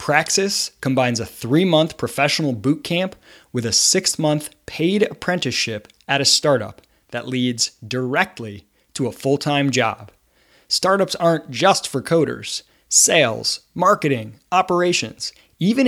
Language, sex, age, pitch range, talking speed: English, male, 20-39, 125-180 Hz, 115 wpm